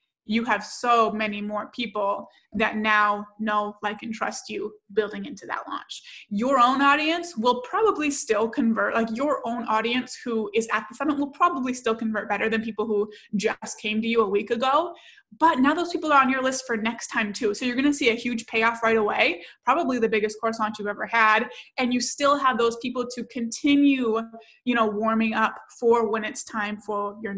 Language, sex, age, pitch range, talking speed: English, female, 20-39, 215-250 Hz, 210 wpm